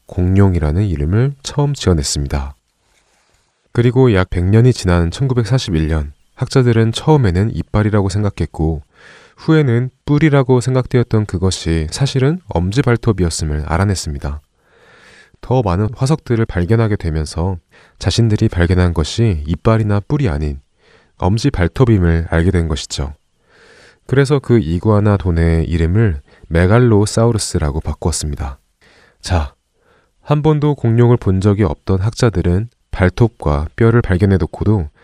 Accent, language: native, Korean